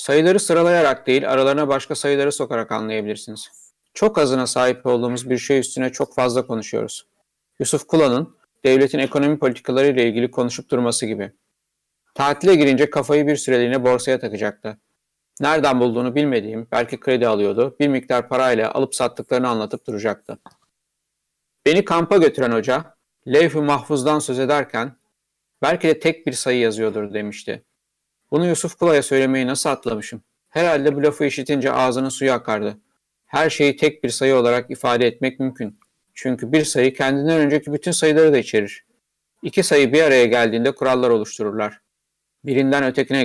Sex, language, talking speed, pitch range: male, Turkish, 145 wpm, 120-145 Hz